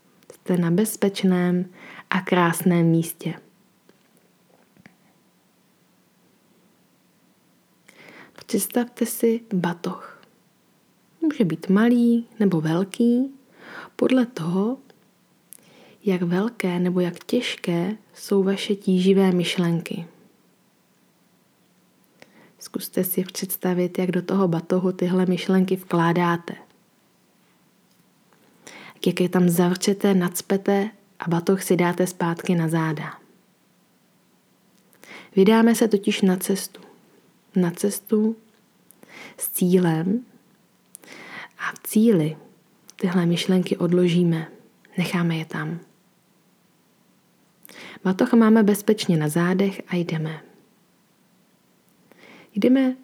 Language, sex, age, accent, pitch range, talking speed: Czech, female, 20-39, native, 175-215 Hz, 85 wpm